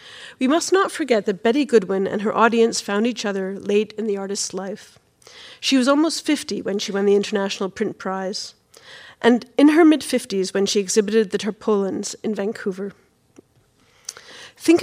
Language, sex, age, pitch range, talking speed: English, female, 40-59, 200-235 Hz, 165 wpm